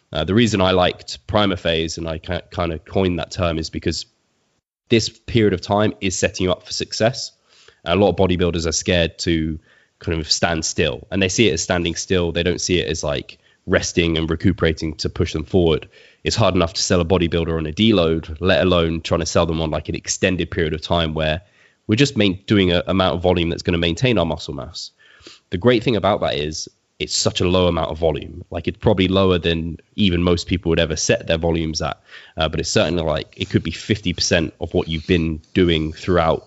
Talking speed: 225 wpm